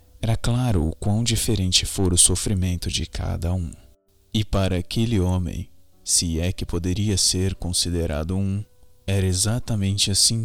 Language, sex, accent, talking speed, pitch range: Portuguese, male, Brazilian, 145 wpm, 85-110 Hz